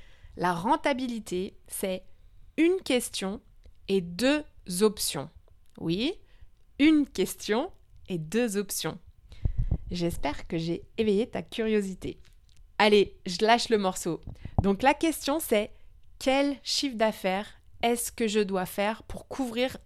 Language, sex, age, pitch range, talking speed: French, female, 30-49, 185-250 Hz, 120 wpm